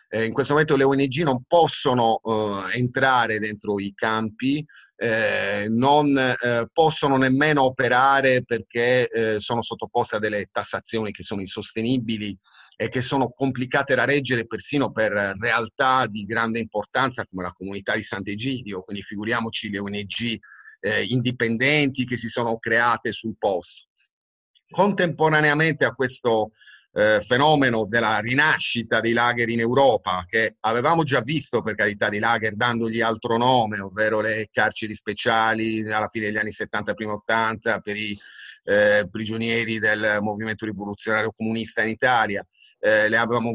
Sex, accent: male, native